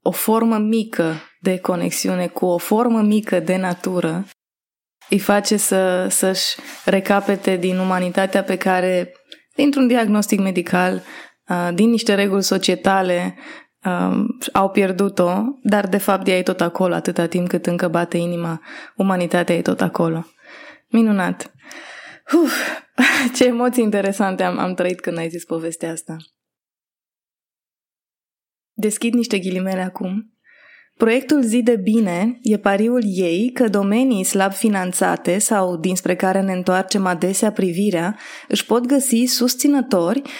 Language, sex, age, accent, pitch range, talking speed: Romanian, female, 20-39, native, 180-235 Hz, 125 wpm